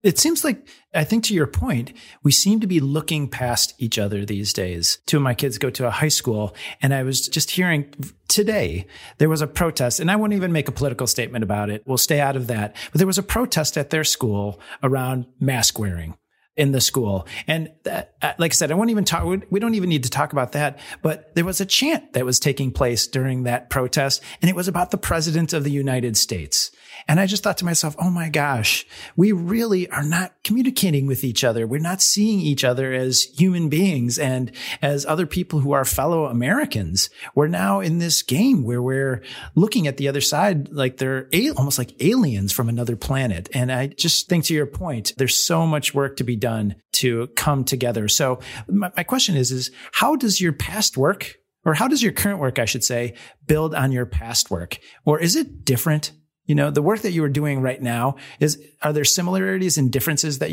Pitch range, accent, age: 125-170 Hz, American, 40-59